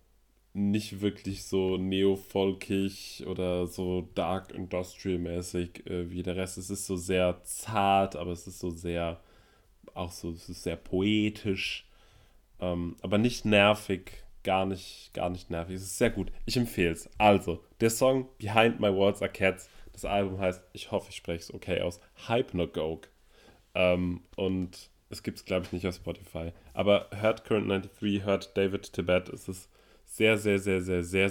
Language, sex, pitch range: German, male, 90-100 Hz